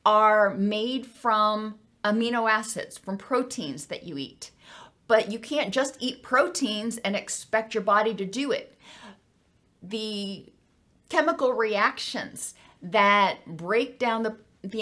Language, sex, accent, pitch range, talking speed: English, female, American, 205-255 Hz, 125 wpm